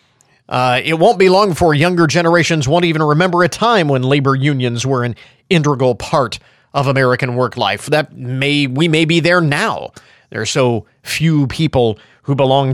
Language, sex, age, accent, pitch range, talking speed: English, male, 40-59, American, 130-165 Hz, 175 wpm